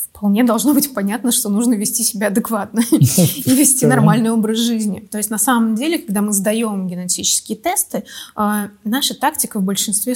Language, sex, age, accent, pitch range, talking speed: Russian, female, 20-39, native, 195-230 Hz, 165 wpm